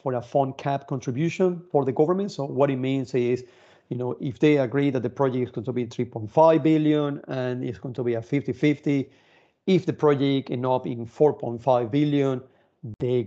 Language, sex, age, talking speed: English, male, 40-59, 195 wpm